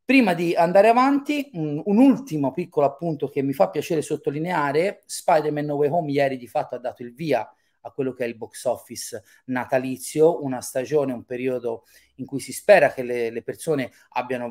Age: 30-49